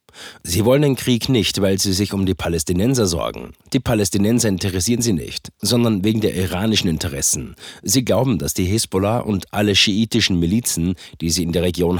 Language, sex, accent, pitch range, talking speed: German, male, German, 90-115 Hz, 180 wpm